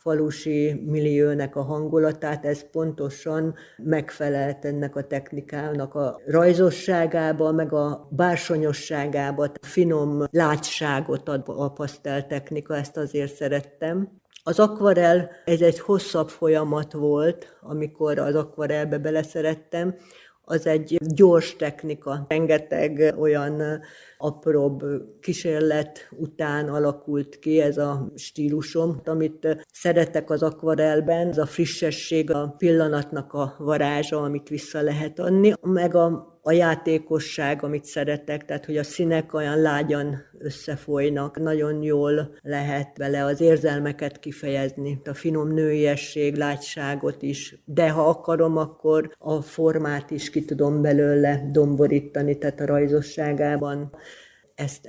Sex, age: female, 60-79